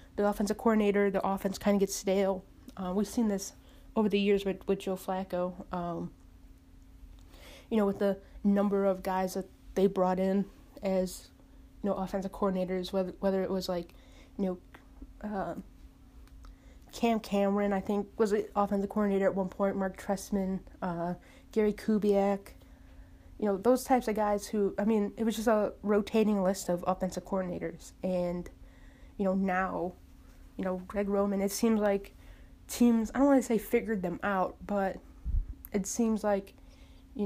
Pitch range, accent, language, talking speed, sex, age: 180-210 Hz, American, English, 165 wpm, female, 20-39